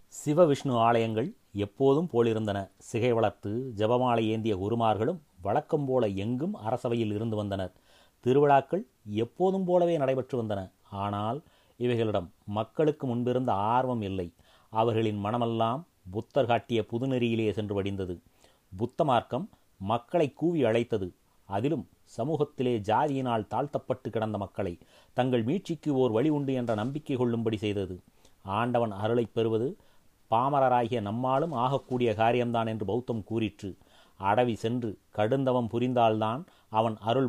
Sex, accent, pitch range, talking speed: male, native, 110-130 Hz, 110 wpm